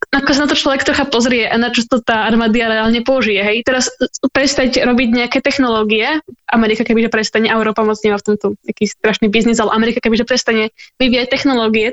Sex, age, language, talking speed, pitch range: female, 10-29, Slovak, 190 wpm, 230-260 Hz